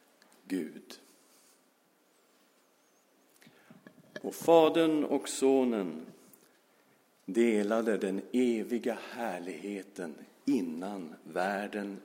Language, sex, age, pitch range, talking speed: Swedish, male, 50-69, 110-155 Hz, 55 wpm